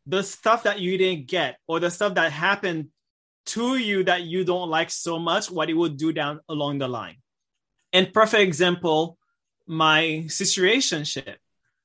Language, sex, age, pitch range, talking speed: English, male, 20-39, 155-190 Hz, 160 wpm